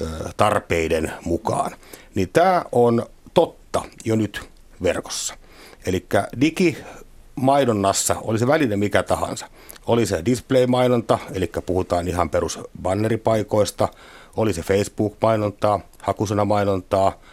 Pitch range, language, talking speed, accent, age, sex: 90-115 Hz, Finnish, 95 wpm, native, 60-79, male